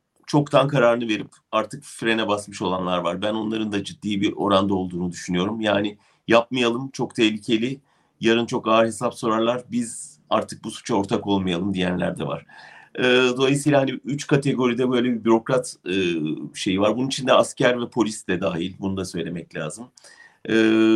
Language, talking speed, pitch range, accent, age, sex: German, 165 wpm, 100-120 Hz, Turkish, 40-59, male